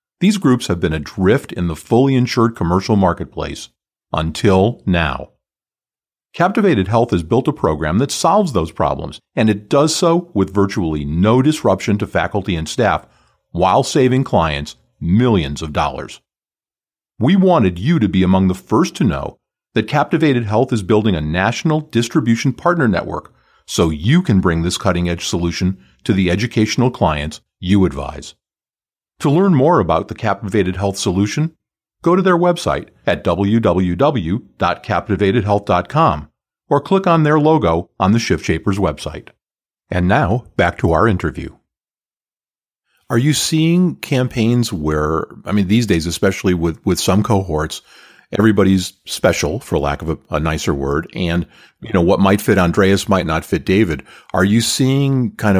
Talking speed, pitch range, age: 155 wpm, 85-120 Hz, 50-69